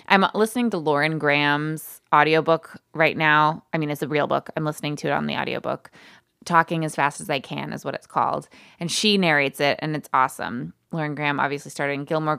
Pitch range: 150-185 Hz